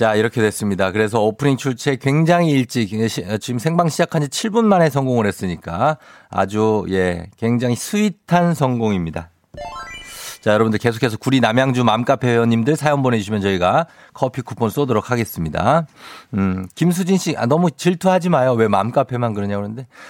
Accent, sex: native, male